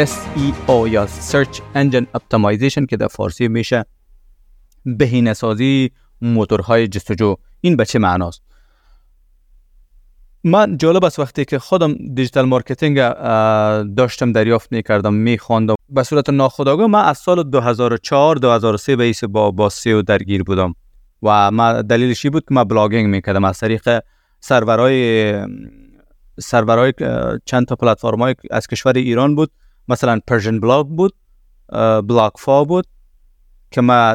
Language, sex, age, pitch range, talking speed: Persian, male, 30-49, 105-135 Hz, 120 wpm